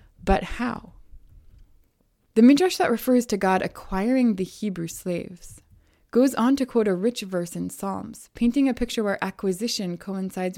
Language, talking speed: English, 155 wpm